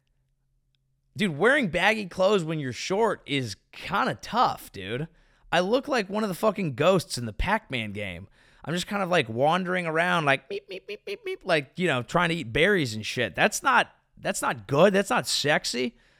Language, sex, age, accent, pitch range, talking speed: English, male, 30-49, American, 140-205 Hz, 200 wpm